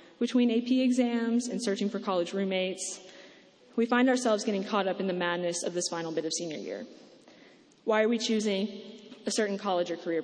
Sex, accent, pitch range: female, American, 190-235 Hz